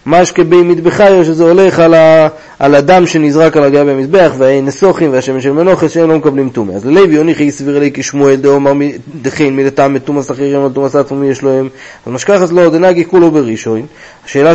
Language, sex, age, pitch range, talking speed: Hebrew, male, 30-49, 135-160 Hz, 200 wpm